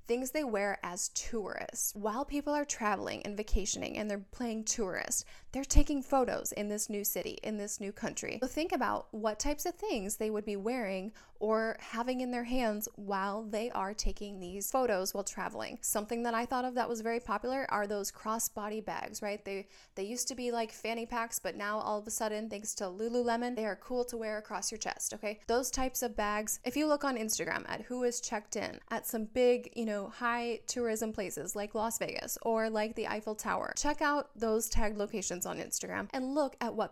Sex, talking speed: female, 215 wpm